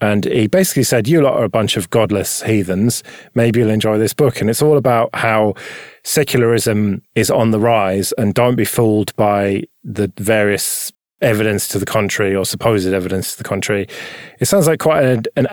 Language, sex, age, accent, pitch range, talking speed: English, male, 30-49, British, 105-135 Hz, 190 wpm